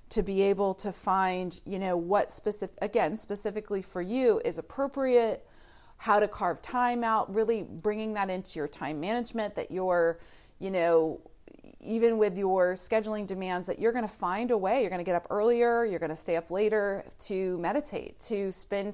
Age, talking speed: 30-49, 185 wpm